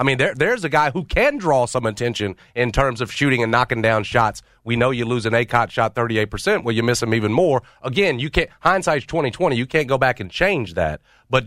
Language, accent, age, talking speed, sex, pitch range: English, American, 40-59, 250 wpm, male, 115-140 Hz